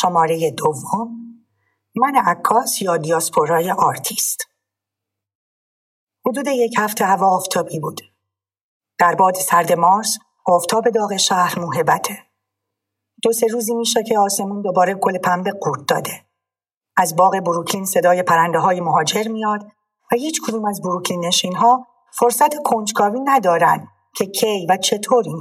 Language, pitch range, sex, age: English, 165-230 Hz, female, 50-69